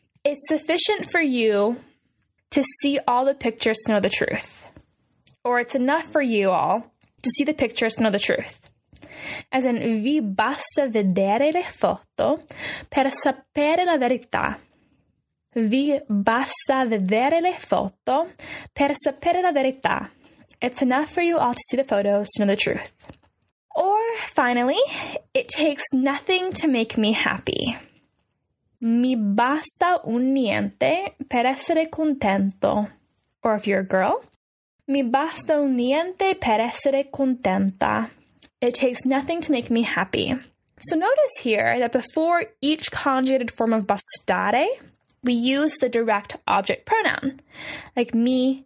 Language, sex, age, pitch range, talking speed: Italian, female, 10-29, 230-295 Hz, 140 wpm